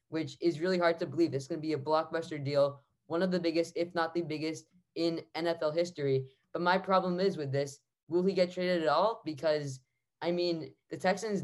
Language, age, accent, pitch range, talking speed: English, 10-29, American, 140-175 Hz, 220 wpm